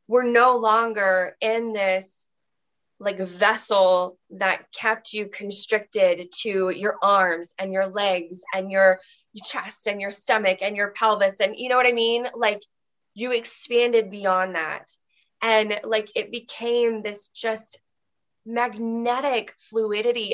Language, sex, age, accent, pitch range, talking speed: English, female, 20-39, American, 195-255 Hz, 135 wpm